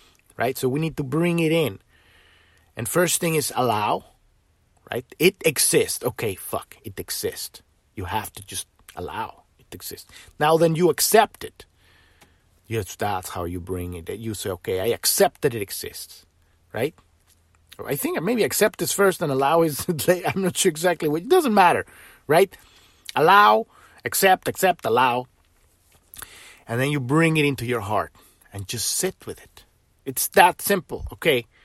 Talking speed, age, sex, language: 165 wpm, 30-49, male, English